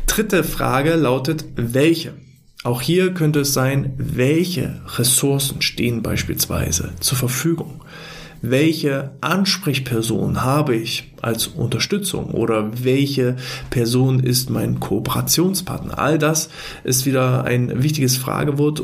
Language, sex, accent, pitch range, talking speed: German, male, German, 125-150 Hz, 110 wpm